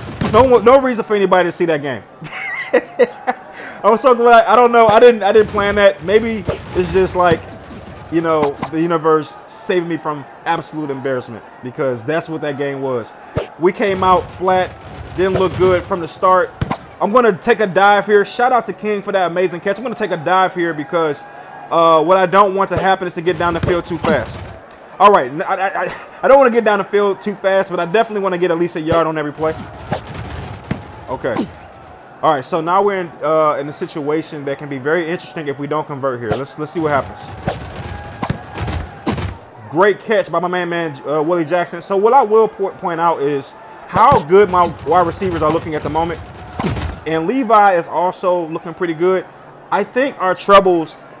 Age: 20-39